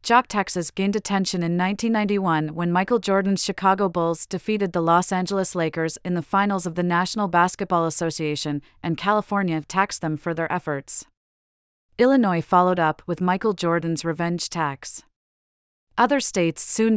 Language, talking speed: English, 150 wpm